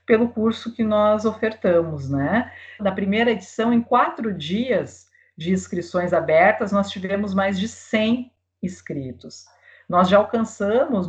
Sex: female